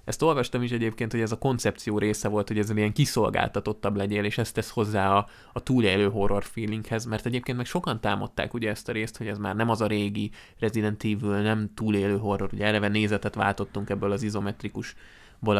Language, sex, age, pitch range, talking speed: Hungarian, male, 20-39, 105-120 Hz, 200 wpm